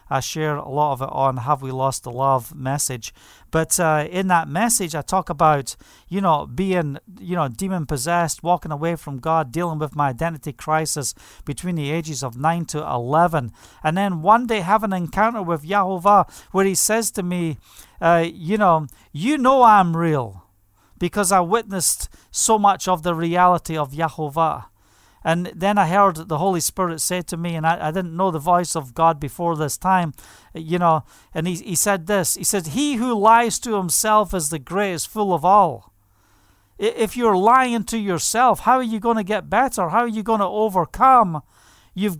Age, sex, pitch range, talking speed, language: 40-59, male, 155-205 Hz, 190 wpm, English